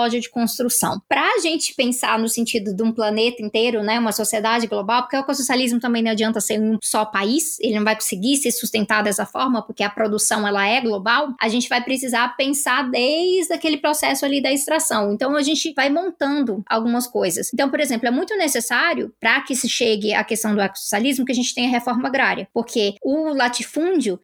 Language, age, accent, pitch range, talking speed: Portuguese, 20-39, Brazilian, 225-285 Hz, 200 wpm